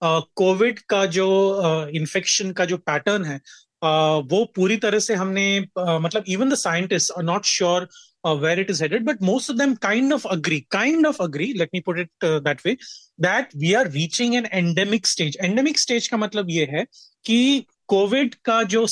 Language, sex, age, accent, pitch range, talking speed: Hindi, male, 30-49, native, 170-215 Hz, 170 wpm